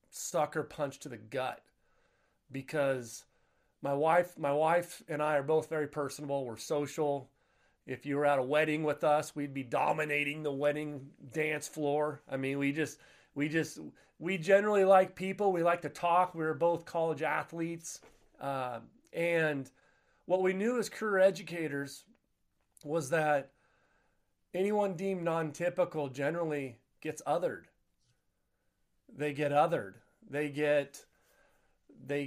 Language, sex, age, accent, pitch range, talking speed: English, male, 30-49, American, 140-165 Hz, 140 wpm